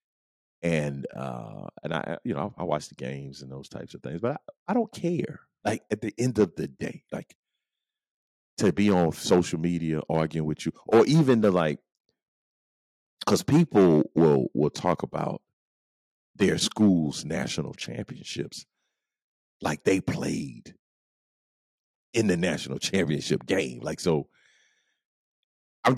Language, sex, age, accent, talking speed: English, male, 40-59, American, 140 wpm